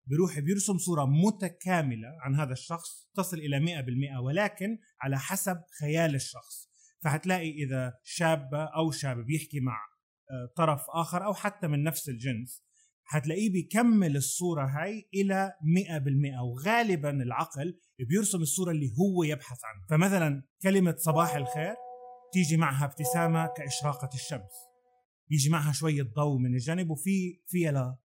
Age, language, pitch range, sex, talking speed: 30-49, Arabic, 140-180 Hz, male, 135 wpm